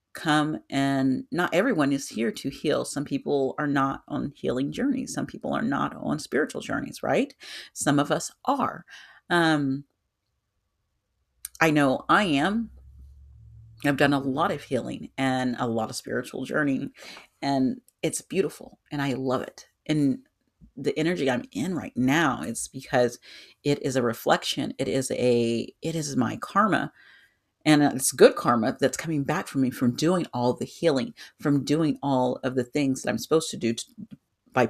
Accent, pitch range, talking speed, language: American, 125-150 Hz, 170 wpm, English